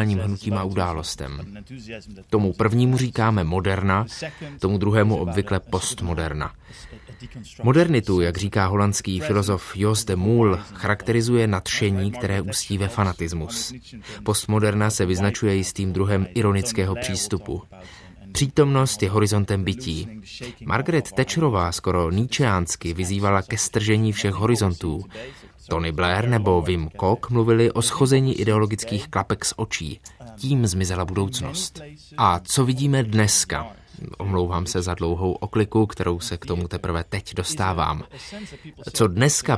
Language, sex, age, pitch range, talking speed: Czech, male, 20-39, 95-115 Hz, 115 wpm